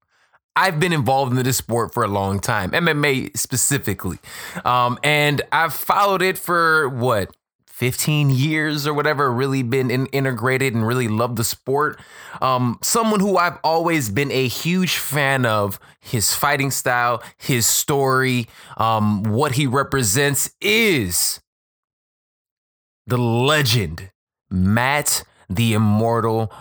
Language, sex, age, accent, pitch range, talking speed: English, male, 20-39, American, 115-155 Hz, 130 wpm